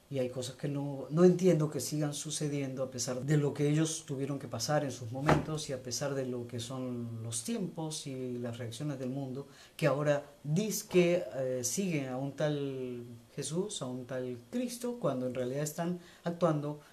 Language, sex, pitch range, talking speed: Spanish, female, 125-155 Hz, 195 wpm